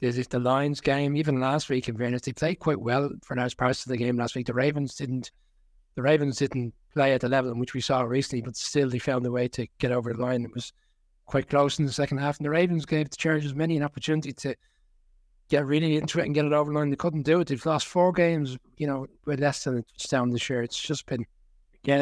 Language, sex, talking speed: English, male, 265 wpm